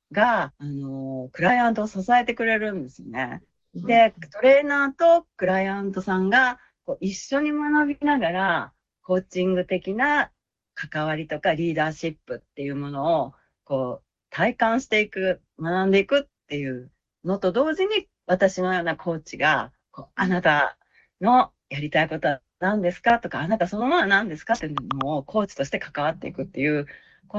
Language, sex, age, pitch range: Japanese, female, 40-59, 160-230 Hz